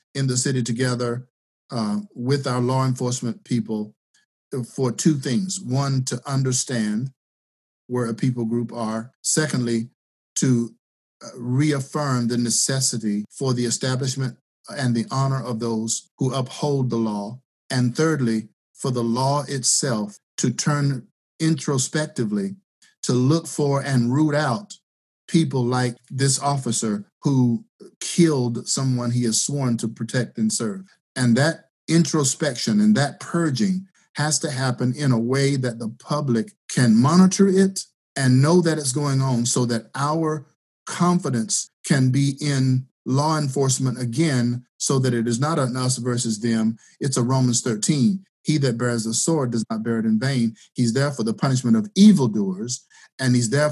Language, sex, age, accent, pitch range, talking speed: English, male, 50-69, American, 120-150 Hz, 150 wpm